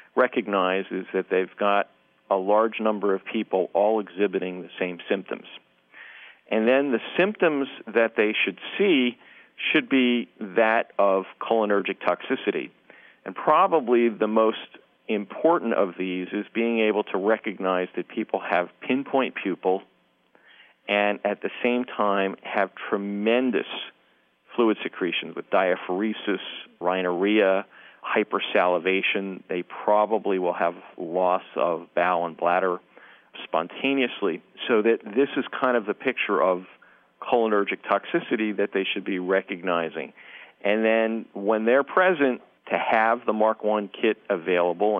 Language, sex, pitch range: English, male, 95-115 Hz